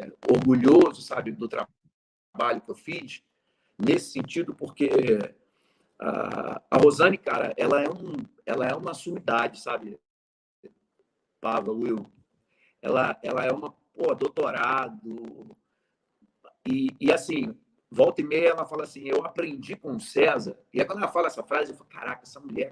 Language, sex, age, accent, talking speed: Portuguese, male, 50-69, Brazilian, 150 wpm